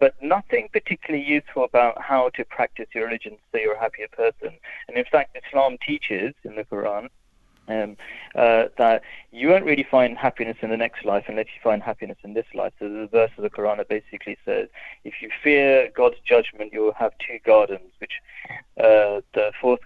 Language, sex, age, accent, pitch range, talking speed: English, male, 30-49, British, 110-145 Hz, 195 wpm